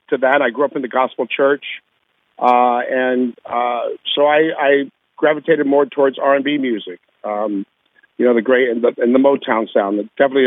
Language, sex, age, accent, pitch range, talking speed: English, male, 50-69, American, 115-145 Hz, 190 wpm